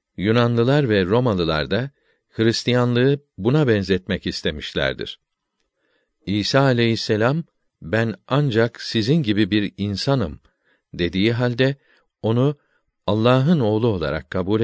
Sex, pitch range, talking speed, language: male, 100-135 Hz, 95 wpm, Turkish